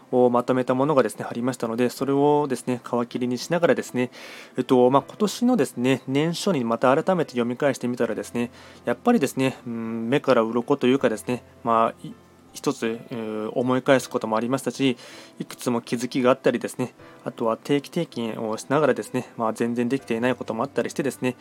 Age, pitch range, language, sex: 20-39, 120-145 Hz, Japanese, male